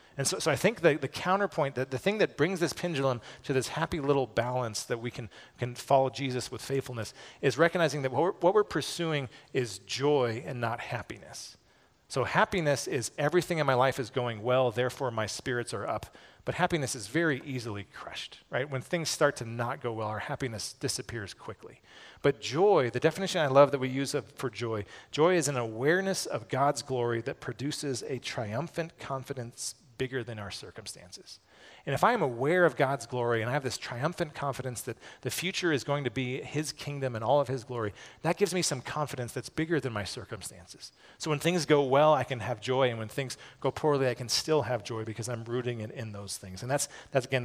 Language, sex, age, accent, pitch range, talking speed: English, male, 40-59, American, 120-145 Hz, 215 wpm